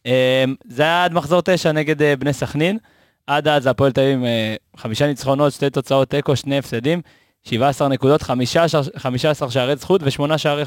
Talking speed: 170 wpm